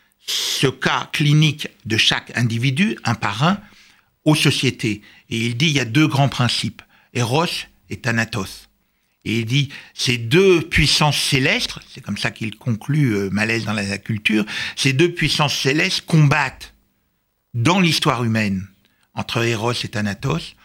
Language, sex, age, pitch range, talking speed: French, male, 60-79, 115-155 Hz, 150 wpm